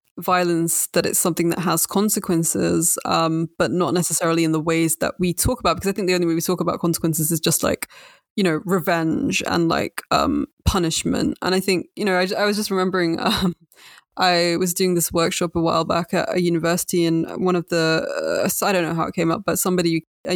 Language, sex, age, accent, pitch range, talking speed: English, female, 20-39, British, 165-190 Hz, 220 wpm